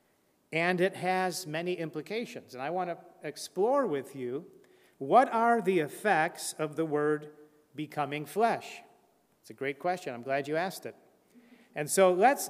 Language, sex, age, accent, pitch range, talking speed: English, male, 50-69, American, 150-200 Hz, 160 wpm